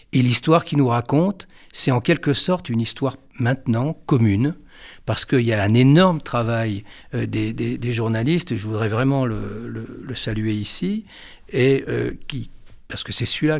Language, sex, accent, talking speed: French, male, French, 175 wpm